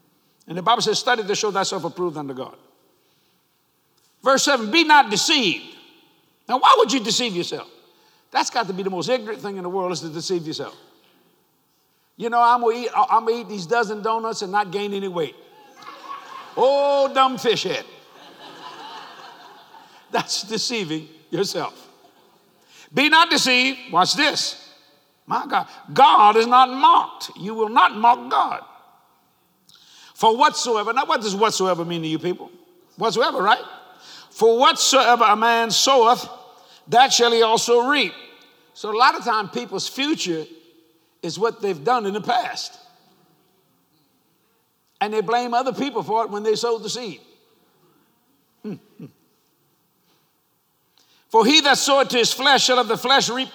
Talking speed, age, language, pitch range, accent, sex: 150 wpm, 60-79, English, 205-275 Hz, American, male